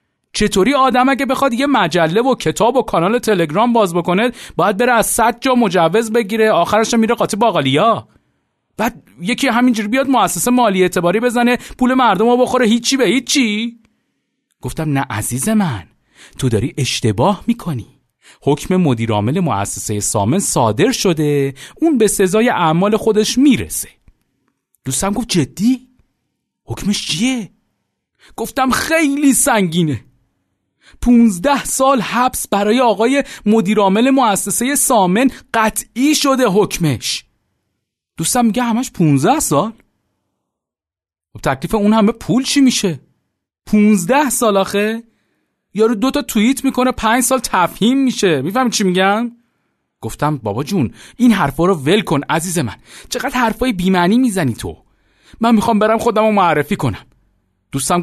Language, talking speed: Persian, 130 wpm